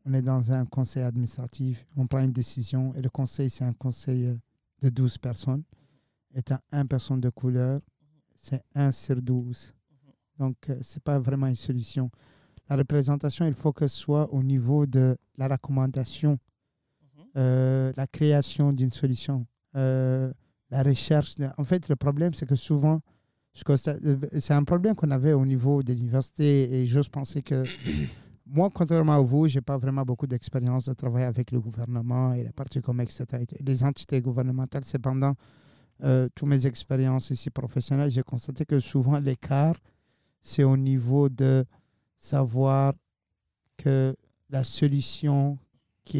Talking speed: 155 wpm